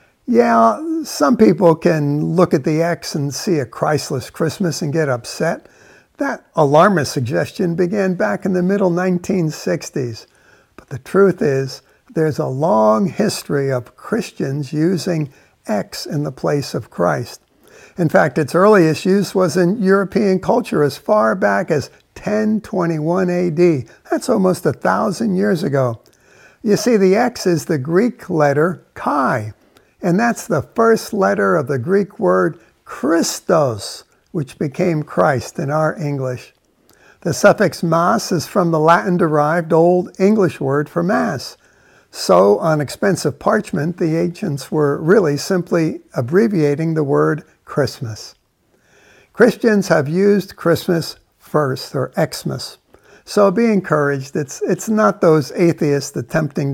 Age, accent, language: 60-79, American, English